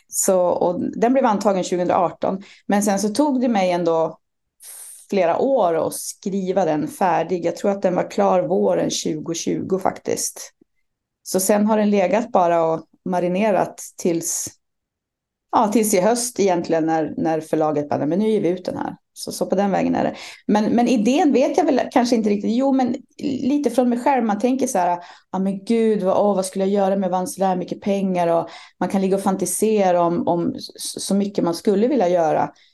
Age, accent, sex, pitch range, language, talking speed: 30-49, native, female, 175-230 Hz, Swedish, 195 wpm